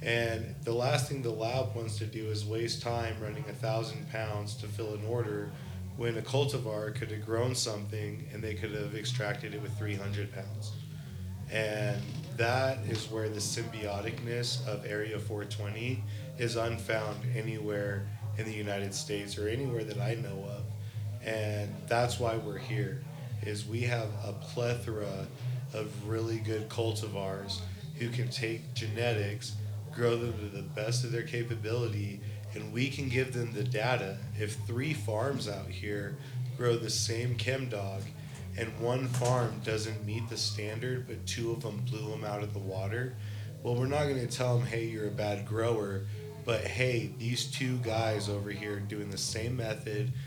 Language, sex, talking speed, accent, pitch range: English, male, 165 wpm, American, 105-125 Hz